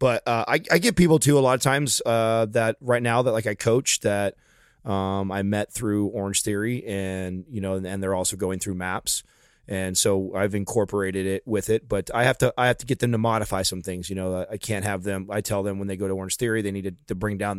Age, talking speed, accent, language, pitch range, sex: 30-49, 265 wpm, American, English, 100-125 Hz, male